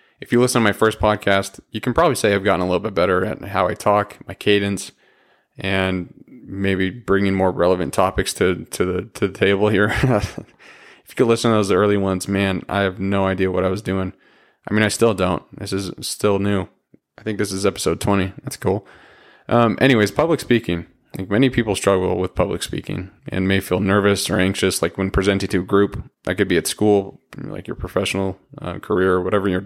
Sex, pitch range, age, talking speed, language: male, 95-110 Hz, 20-39, 215 wpm, English